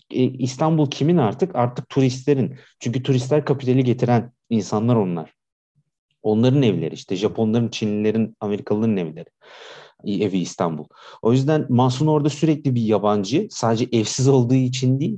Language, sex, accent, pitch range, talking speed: Turkish, male, native, 105-145 Hz, 125 wpm